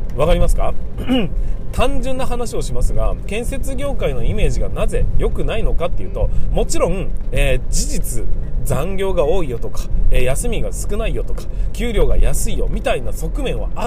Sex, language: male, Japanese